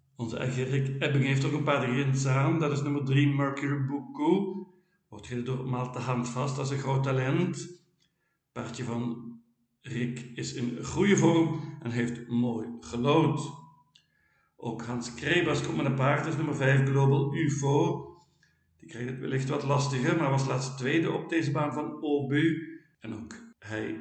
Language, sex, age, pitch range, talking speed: Dutch, male, 60-79, 125-150 Hz, 175 wpm